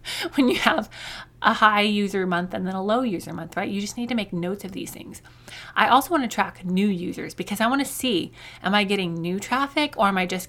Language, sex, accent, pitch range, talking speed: English, female, American, 185-225 Hz, 250 wpm